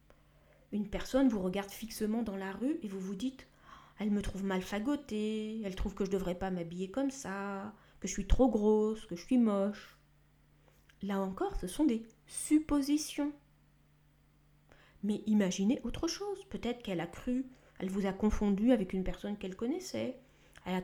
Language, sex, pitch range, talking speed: French, female, 190-255 Hz, 175 wpm